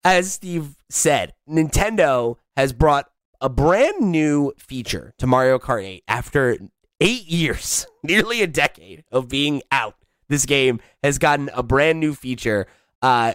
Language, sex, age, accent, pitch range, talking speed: English, male, 20-39, American, 110-145 Hz, 145 wpm